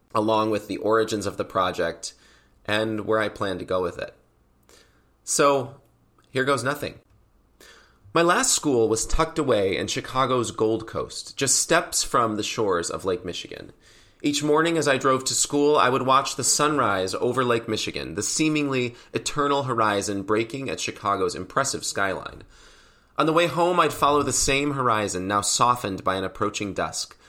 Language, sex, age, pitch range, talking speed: English, male, 30-49, 105-140 Hz, 165 wpm